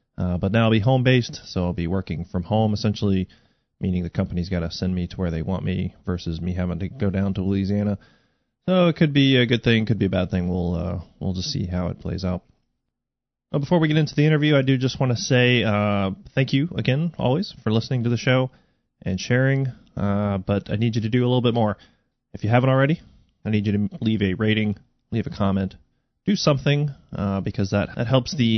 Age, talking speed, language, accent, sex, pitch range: 30-49, 235 wpm, English, American, male, 95-125 Hz